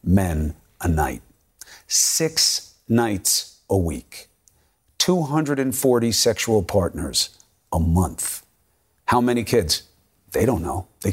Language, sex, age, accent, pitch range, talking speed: English, male, 50-69, American, 110-165 Hz, 100 wpm